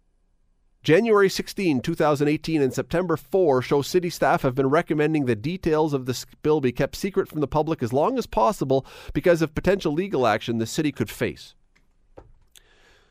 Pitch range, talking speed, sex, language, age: 115-165 Hz, 165 wpm, male, English, 40-59